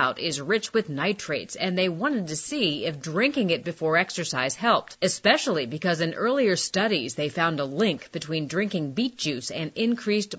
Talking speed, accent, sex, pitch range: 175 wpm, American, female, 165-220 Hz